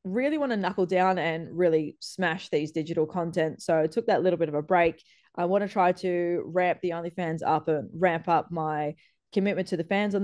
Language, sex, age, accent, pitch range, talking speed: English, female, 20-39, Australian, 160-195 Hz, 225 wpm